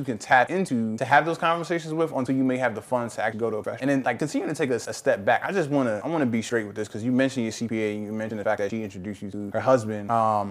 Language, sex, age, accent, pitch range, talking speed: English, male, 20-39, American, 115-145 Hz, 345 wpm